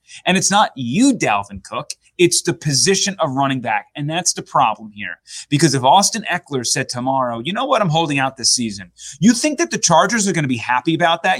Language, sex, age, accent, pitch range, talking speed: English, male, 30-49, American, 130-185 Hz, 225 wpm